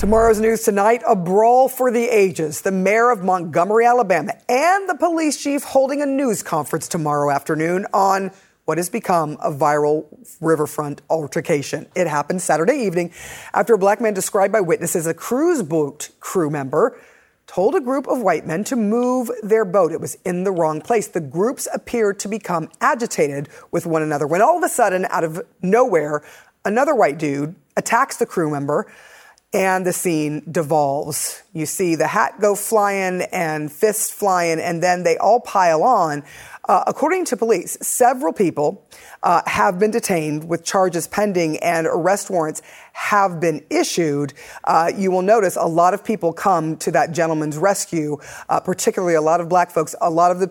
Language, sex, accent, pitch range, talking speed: English, female, American, 160-225 Hz, 175 wpm